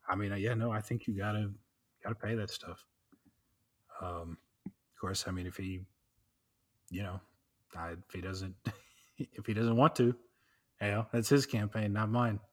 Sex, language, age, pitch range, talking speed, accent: male, English, 30-49, 100-120 Hz, 185 wpm, American